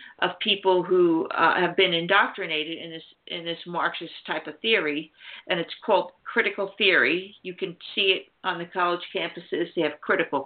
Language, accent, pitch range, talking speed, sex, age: English, American, 175-205 Hz, 180 wpm, female, 50-69